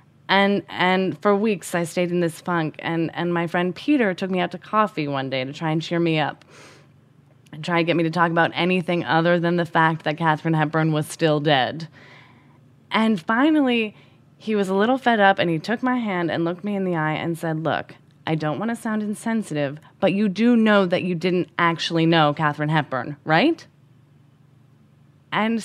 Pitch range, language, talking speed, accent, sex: 160-245 Hz, English, 205 wpm, American, female